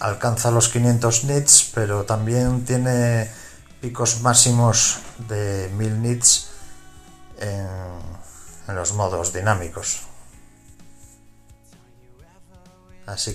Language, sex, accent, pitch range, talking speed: Spanish, male, Spanish, 100-120 Hz, 80 wpm